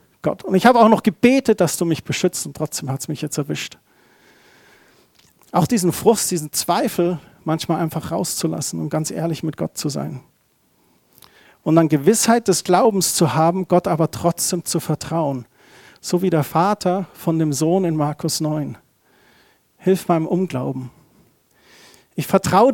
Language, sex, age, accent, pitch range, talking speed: German, male, 40-59, German, 155-190 Hz, 160 wpm